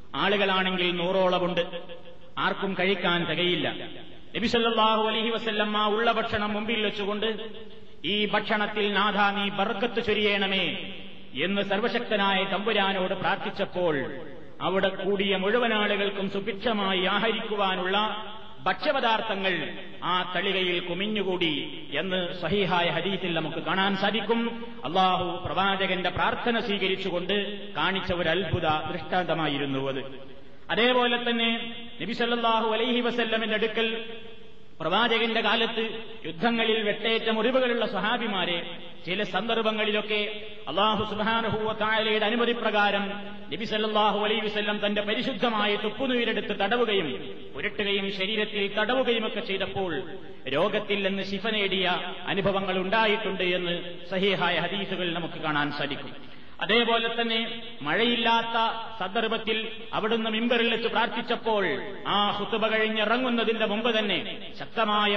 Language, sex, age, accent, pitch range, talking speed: Malayalam, male, 30-49, native, 190-225 Hz, 90 wpm